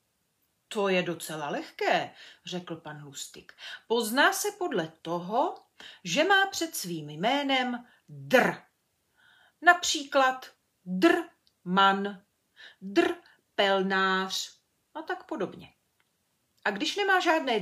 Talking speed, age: 100 wpm, 40-59